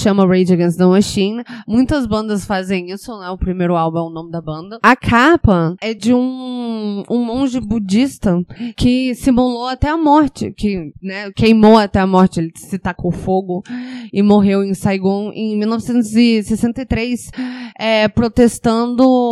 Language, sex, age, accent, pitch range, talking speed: Portuguese, female, 20-39, Brazilian, 180-230 Hz, 155 wpm